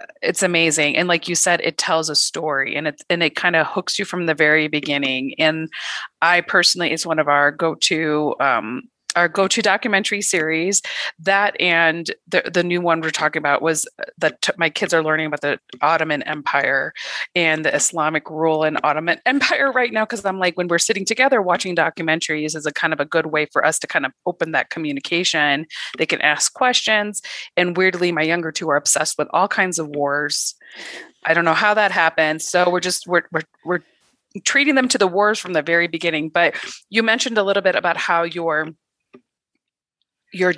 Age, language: 30-49, English